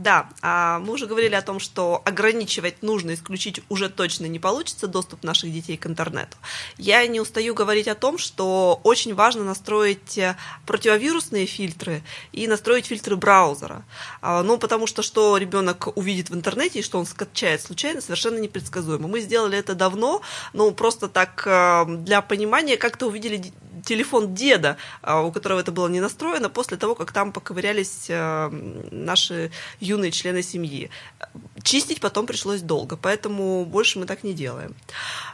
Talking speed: 150 wpm